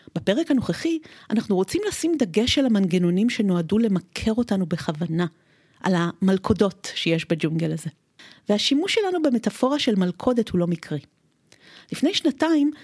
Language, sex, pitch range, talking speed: Hebrew, female, 175-250 Hz, 125 wpm